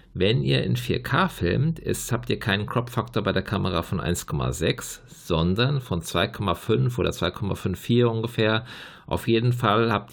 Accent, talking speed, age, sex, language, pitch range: German, 140 wpm, 50-69, male, German, 105-125 Hz